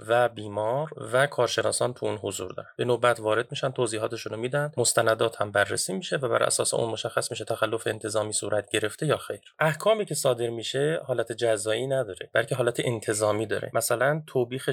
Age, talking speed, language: 30-49, 175 wpm, Persian